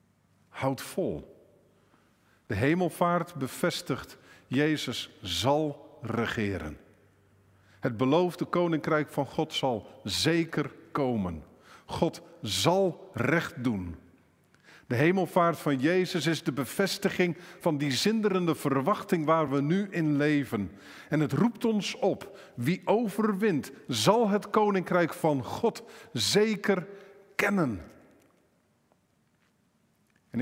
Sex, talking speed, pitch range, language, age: male, 100 wpm, 145-185 Hz, Dutch, 50-69